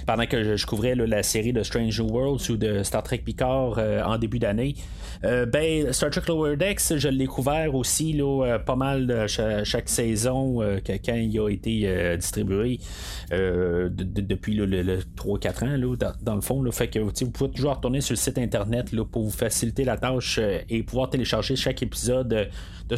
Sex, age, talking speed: male, 30-49, 220 wpm